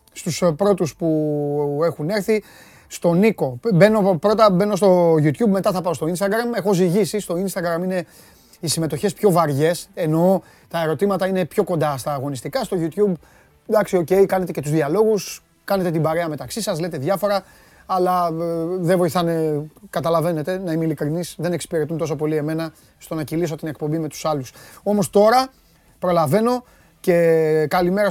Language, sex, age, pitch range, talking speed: Greek, male, 30-49, 155-200 Hz, 160 wpm